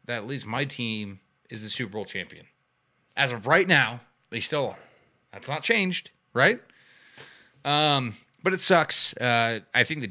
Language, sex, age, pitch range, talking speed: English, male, 20-39, 120-160 Hz, 165 wpm